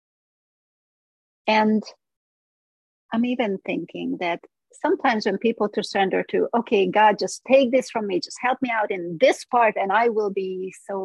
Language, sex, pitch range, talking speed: English, female, 185-230 Hz, 160 wpm